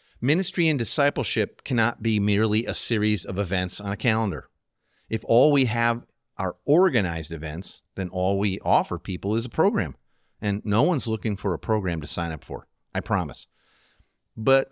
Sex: male